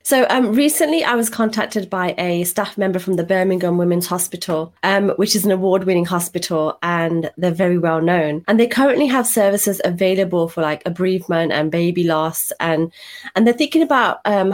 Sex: female